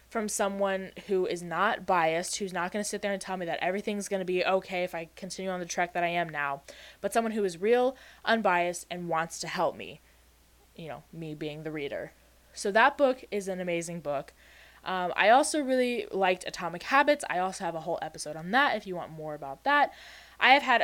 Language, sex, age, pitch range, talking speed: English, female, 10-29, 170-215 Hz, 220 wpm